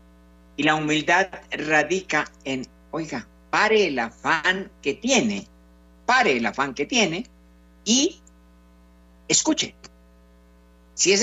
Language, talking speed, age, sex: Spanish, 105 wpm, 50-69, male